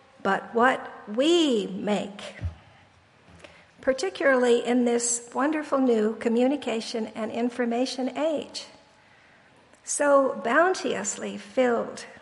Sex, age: female, 60-79